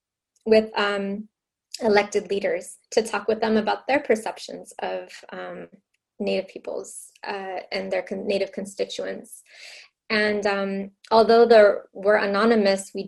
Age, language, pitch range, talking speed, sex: 20-39, English, 195-225 Hz, 130 wpm, female